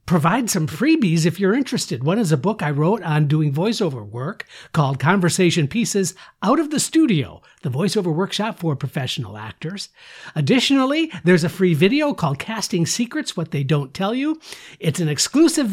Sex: male